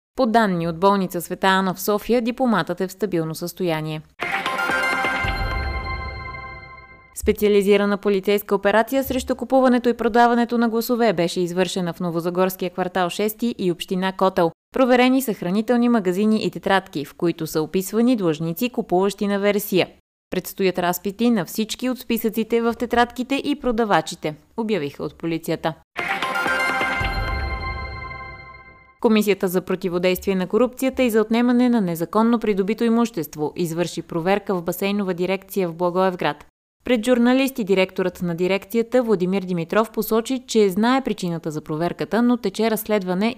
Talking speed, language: 130 wpm, Bulgarian